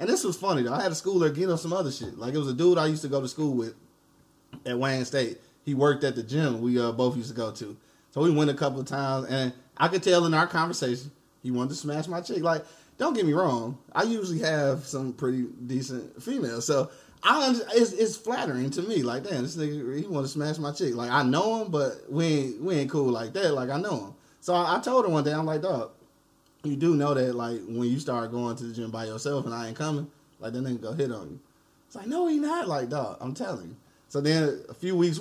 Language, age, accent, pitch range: English, 20-39, American, 130-165 Hz